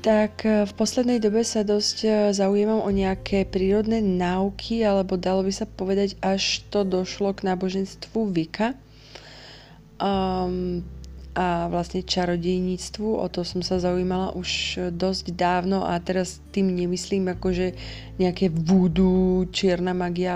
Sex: female